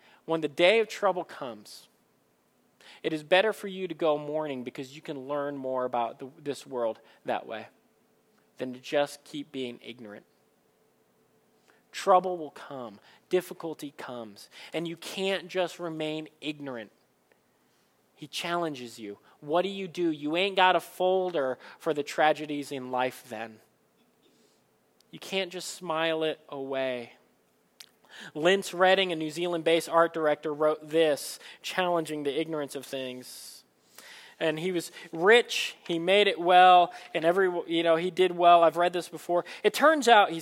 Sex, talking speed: male, 150 wpm